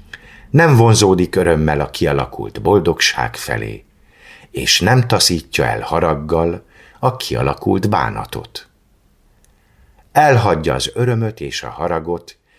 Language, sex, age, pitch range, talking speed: Hungarian, male, 50-69, 75-110 Hz, 100 wpm